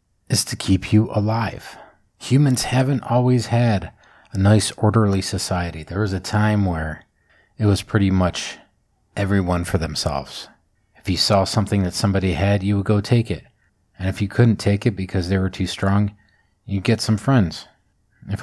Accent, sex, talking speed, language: American, male, 175 wpm, English